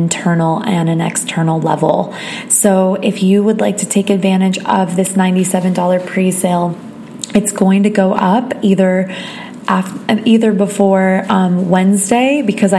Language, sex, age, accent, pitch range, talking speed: English, female, 20-39, American, 180-205 Hz, 130 wpm